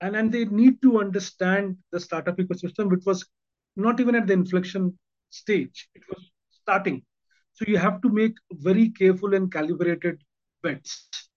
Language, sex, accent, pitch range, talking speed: English, male, Indian, 180-230 Hz, 160 wpm